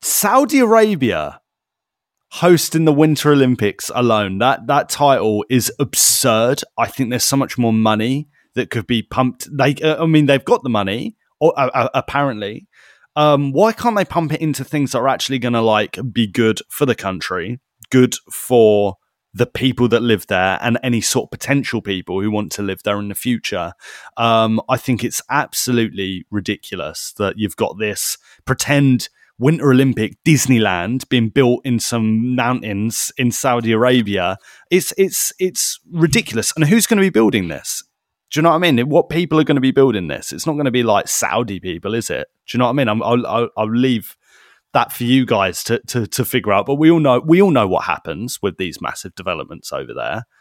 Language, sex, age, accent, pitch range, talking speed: English, male, 30-49, British, 110-145 Hz, 195 wpm